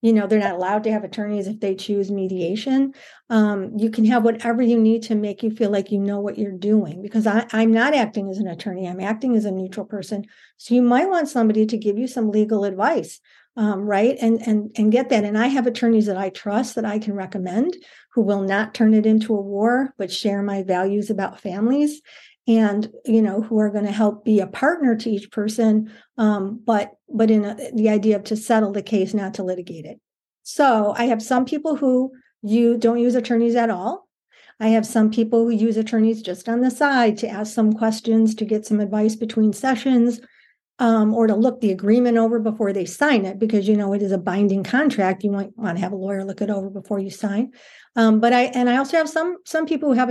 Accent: American